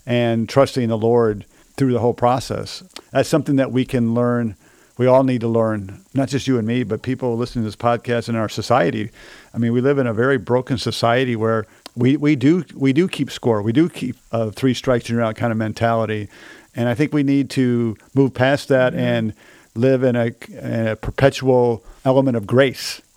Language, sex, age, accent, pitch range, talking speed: English, male, 50-69, American, 110-130 Hz, 210 wpm